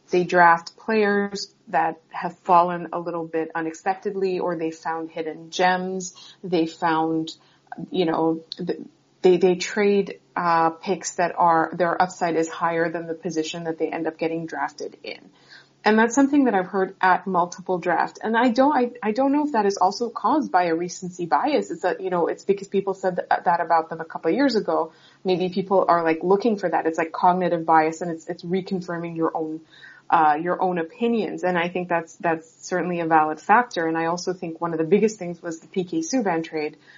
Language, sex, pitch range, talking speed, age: English, female, 165-195 Hz, 205 wpm, 30-49